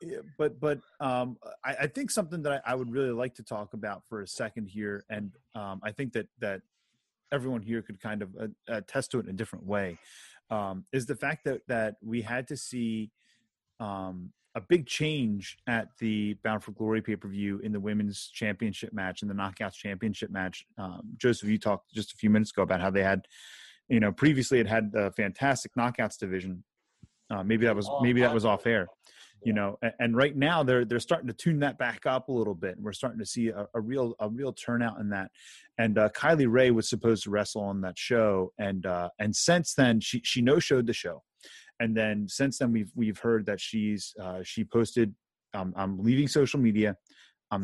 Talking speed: 210 wpm